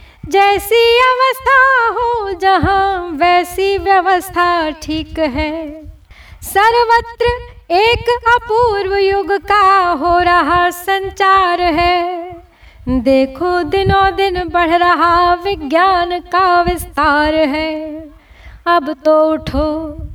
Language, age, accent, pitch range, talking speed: Hindi, 30-49, native, 330-390 Hz, 85 wpm